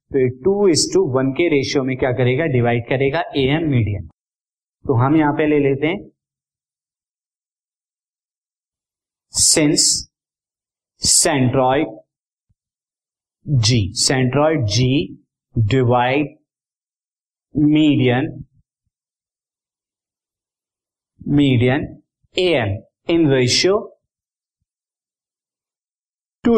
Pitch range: 125-165 Hz